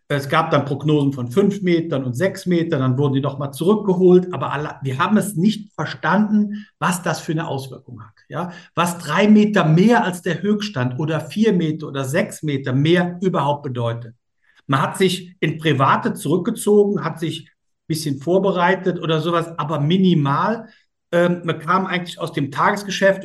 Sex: male